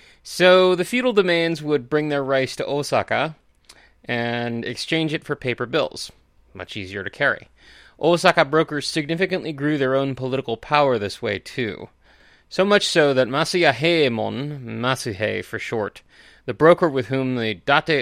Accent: American